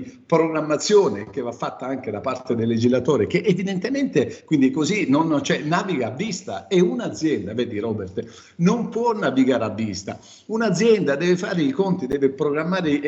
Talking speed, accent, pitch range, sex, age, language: 160 wpm, native, 135-195 Hz, male, 50-69, Italian